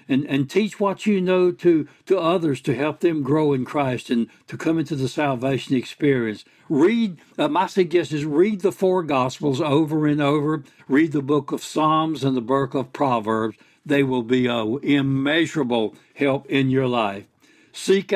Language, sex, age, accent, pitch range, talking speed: English, male, 60-79, American, 125-155 Hz, 180 wpm